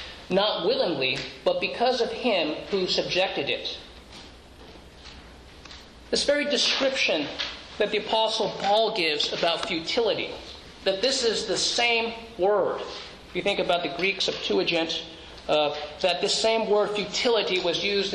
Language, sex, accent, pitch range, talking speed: English, male, American, 200-260 Hz, 130 wpm